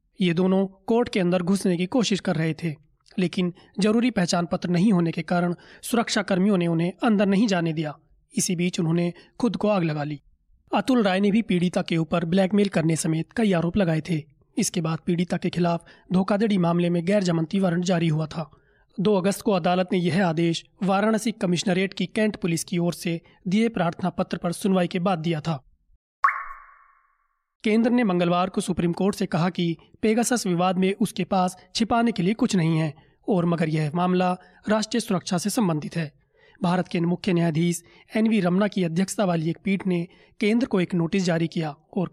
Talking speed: 190 wpm